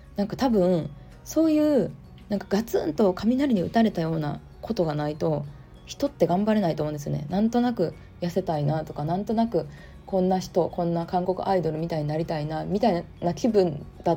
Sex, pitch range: female, 150-215 Hz